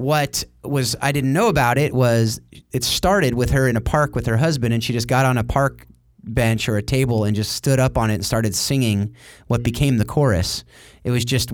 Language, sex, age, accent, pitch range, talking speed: English, male, 30-49, American, 105-135 Hz, 235 wpm